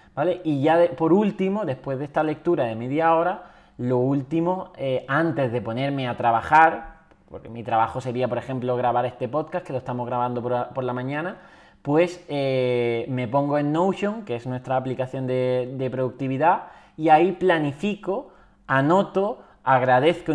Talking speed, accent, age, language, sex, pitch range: 165 wpm, Spanish, 20-39, Spanish, male, 125-155 Hz